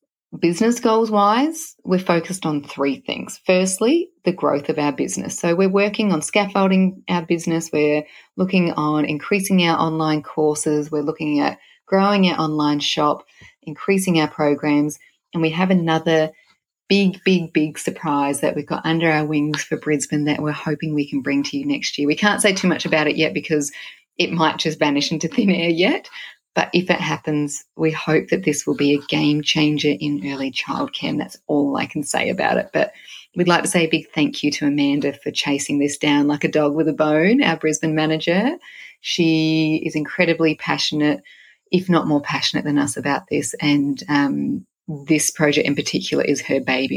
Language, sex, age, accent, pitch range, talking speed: English, female, 30-49, Australian, 150-175 Hz, 190 wpm